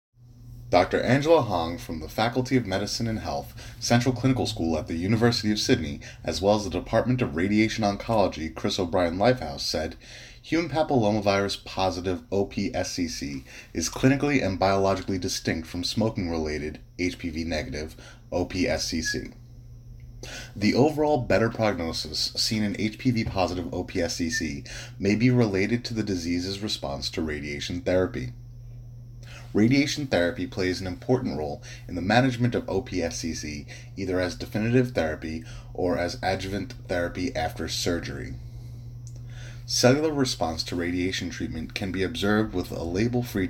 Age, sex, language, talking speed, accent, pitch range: 30-49, male, English, 130 wpm, American, 95-120 Hz